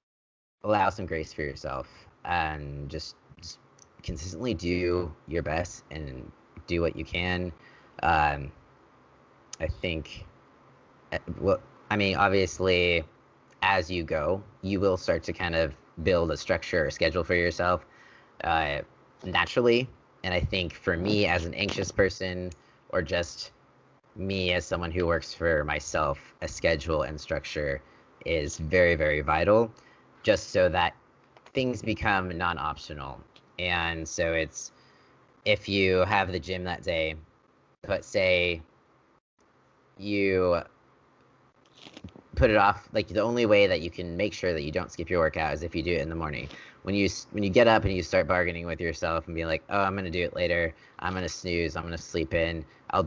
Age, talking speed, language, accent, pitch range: 30-49, 160 wpm, English, American, 80-95 Hz